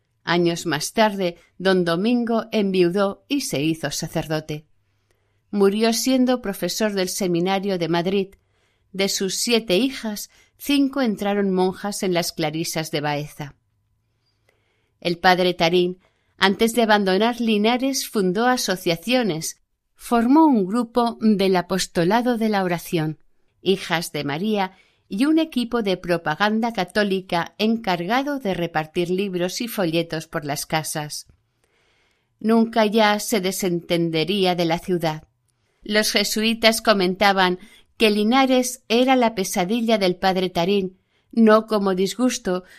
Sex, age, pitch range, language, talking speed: female, 50-69, 165-225 Hz, Spanish, 120 wpm